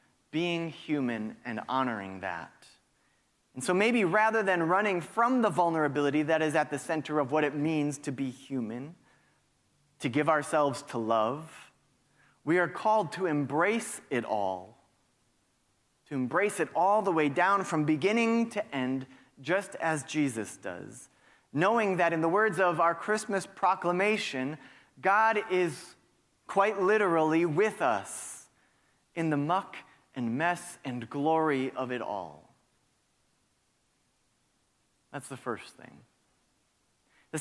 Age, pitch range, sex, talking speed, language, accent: 30-49, 135-200 Hz, male, 135 wpm, English, American